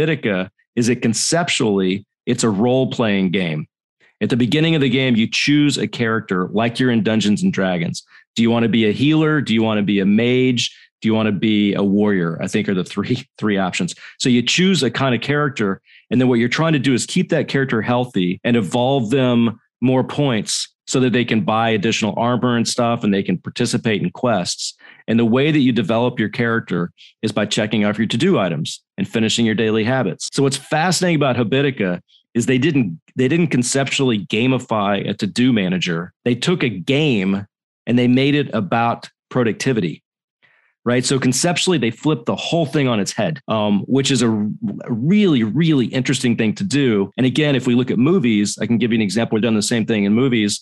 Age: 40-59